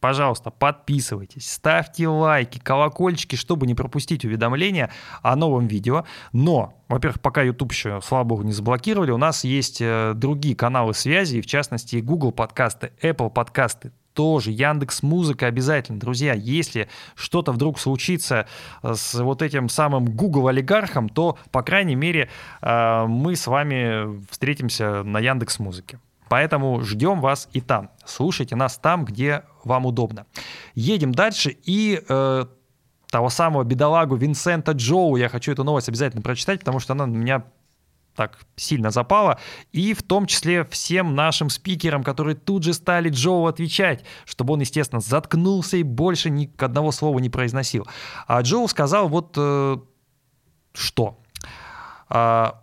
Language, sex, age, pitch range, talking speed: Russian, male, 20-39, 120-155 Hz, 145 wpm